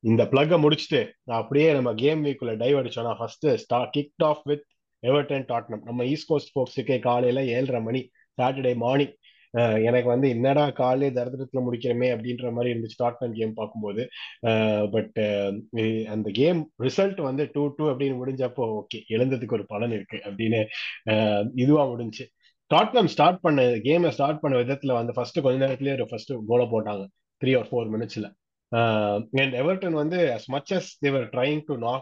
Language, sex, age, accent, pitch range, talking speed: Tamil, male, 30-49, native, 115-145 Hz, 155 wpm